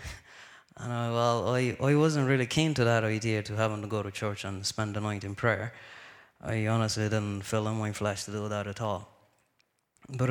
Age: 20-39